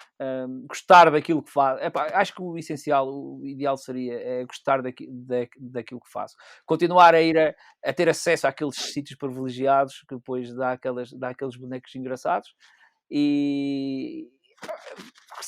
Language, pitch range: Portuguese, 135-180 Hz